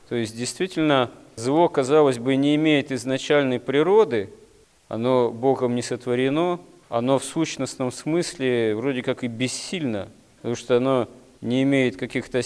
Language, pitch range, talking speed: Russian, 115-145 Hz, 135 wpm